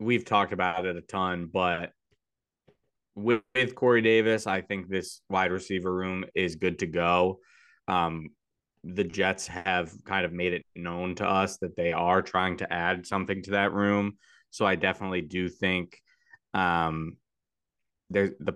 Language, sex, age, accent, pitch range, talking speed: English, male, 20-39, American, 85-100 Hz, 160 wpm